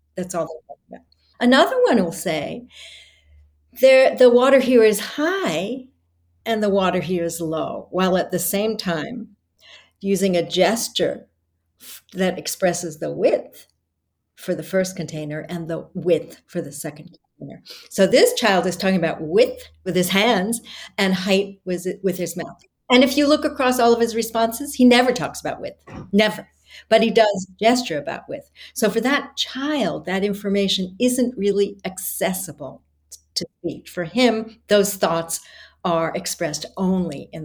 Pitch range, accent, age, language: 170-245 Hz, American, 60-79, English